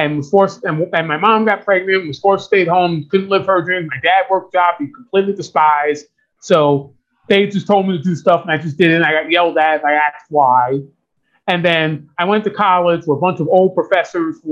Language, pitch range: English, 160-210 Hz